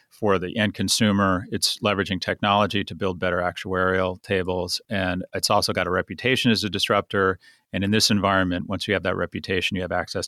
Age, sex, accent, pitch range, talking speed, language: 40-59, male, American, 95-110 Hz, 195 wpm, English